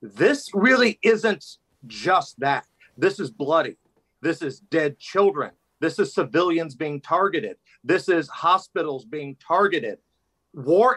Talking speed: 125 wpm